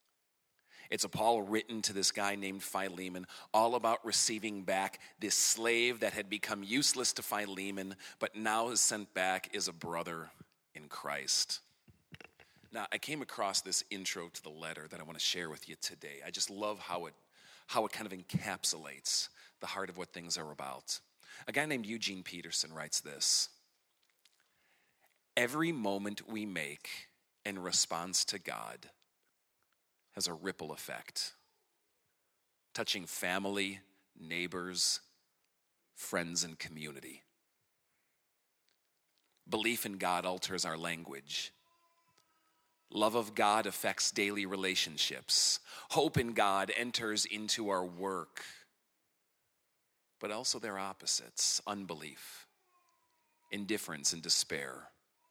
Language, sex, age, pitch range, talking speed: English, male, 40-59, 90-115 Hz, 125 wpm